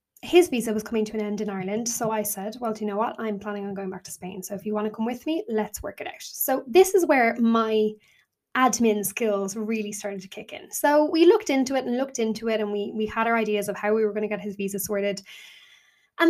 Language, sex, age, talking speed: English, female, 10-29, 275 wpm